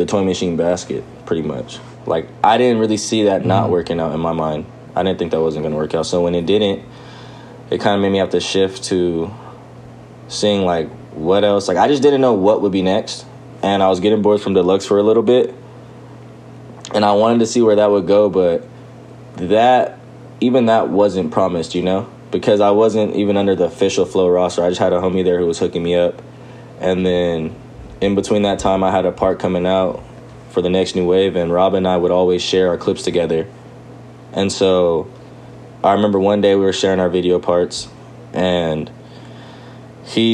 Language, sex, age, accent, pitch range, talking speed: English, male, 20-39, American, 85-105 Hz, 210 wpm